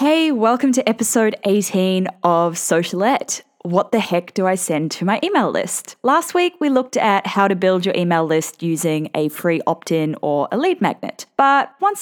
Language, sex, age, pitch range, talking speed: English, female, 10-29, 175-265 Hz, 190 wpm